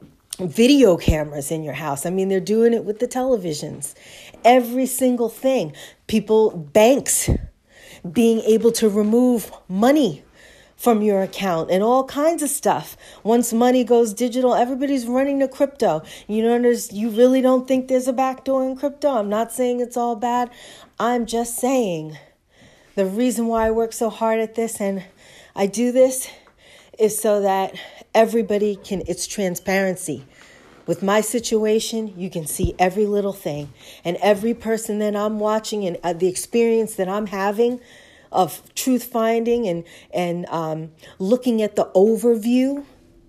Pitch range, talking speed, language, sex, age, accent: 190-240 Hz, 155 wpm, English, female, 40-59, American